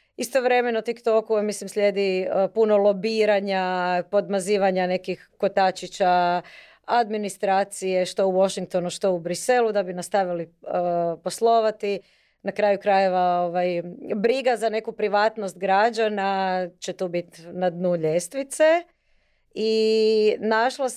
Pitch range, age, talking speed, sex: 190-235 Hz, 30-49, 115 wpm, female